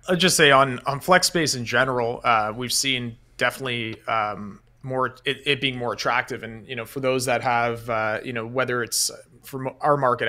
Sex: male